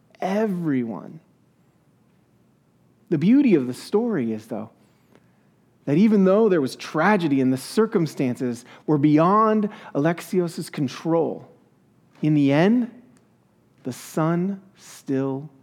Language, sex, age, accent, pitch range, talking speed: English, male, 40-59, American, 130-185 Hz, 105 wpm